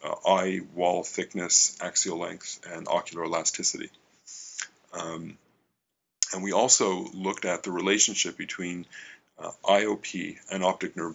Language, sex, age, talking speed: English, male, 40-59, 125 wpm